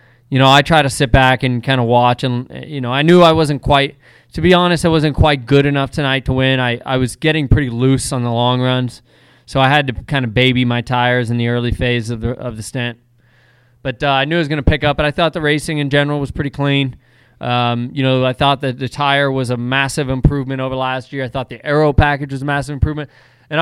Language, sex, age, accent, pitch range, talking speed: English, male, 20-39, American, 125-145 Hz, 260 wpm